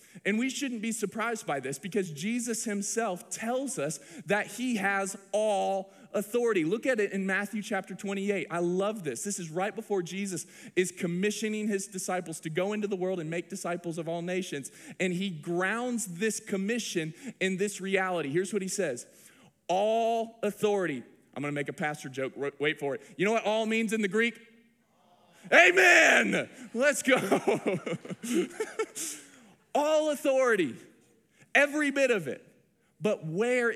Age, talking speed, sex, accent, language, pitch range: 20-39, 160 wpm, male, American, English, 185-235 Hz